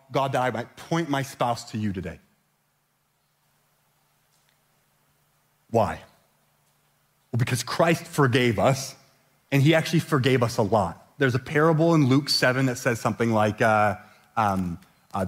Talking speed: 140 wpm